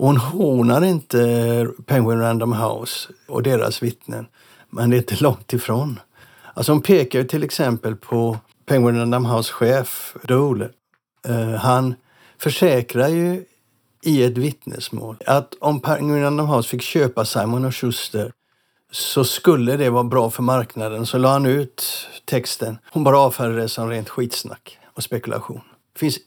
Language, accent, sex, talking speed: Swedish, native, male, 145 wpm